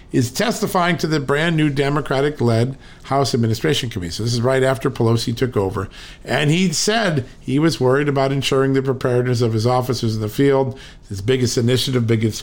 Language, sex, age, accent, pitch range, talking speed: English, male, 50-69, American, 115-140 Hz, 185 wpm